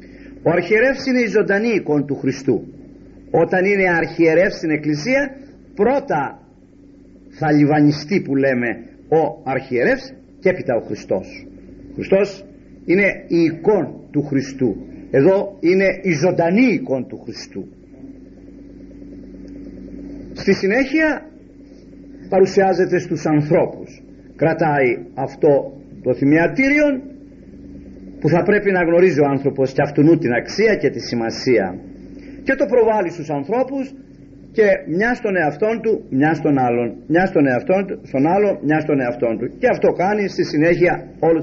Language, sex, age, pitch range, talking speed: Greek, male, 50-69, 145-240 Hz, 130 wpm